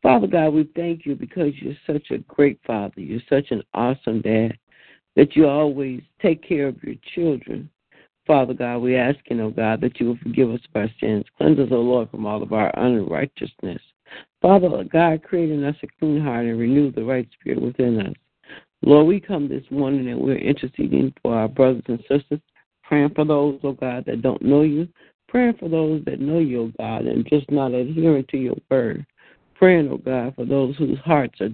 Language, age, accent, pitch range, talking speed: English, 60-79, American, 120-150 Hz, 205 wpm